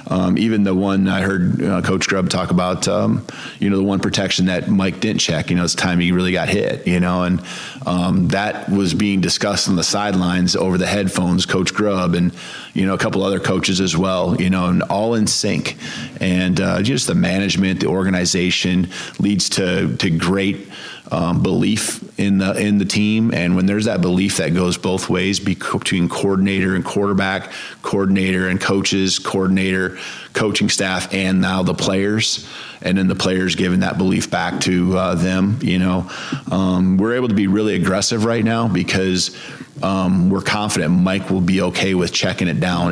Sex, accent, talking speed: male, American, 190 wpm